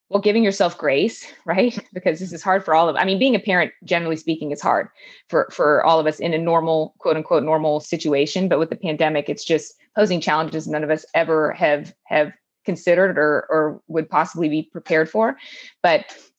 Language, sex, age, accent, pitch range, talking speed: English, female, 20-39, American, 160-195 Hz, 205 wpm